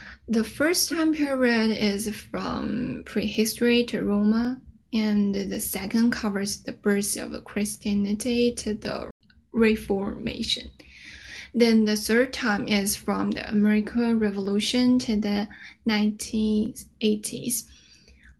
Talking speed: 105 wpm